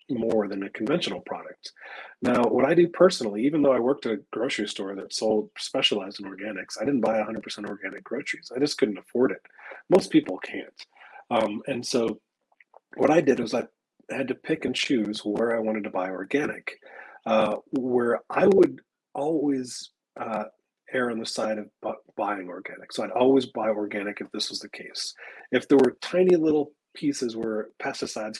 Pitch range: 110-145 Hz